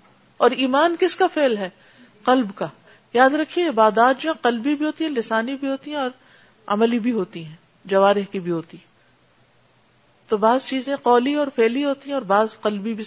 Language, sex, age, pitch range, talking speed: Urdu, female, 50-69, 210-270 Hz, 195 wpm